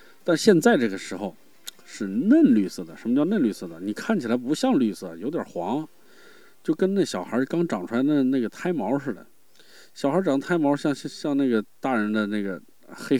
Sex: male